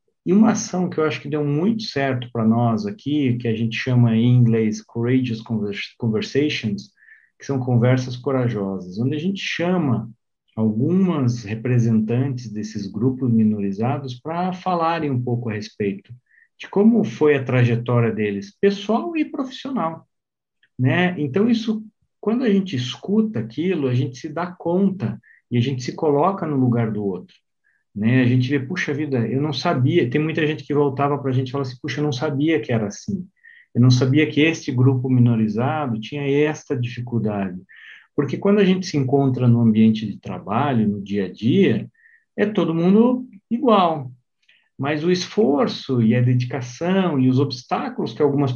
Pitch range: 120-165 Hz